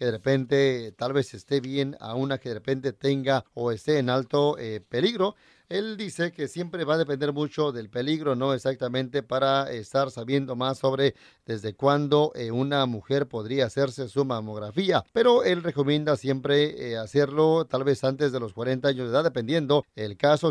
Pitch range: 130-145 Hz